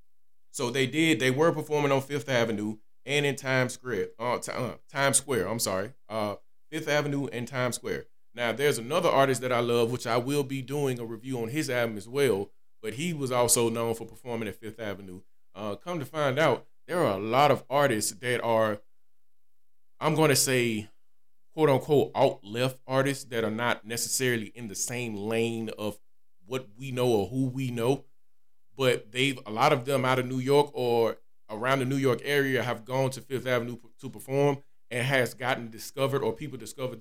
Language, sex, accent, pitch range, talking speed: English, male, American, 115-135 Hz, 200 wpm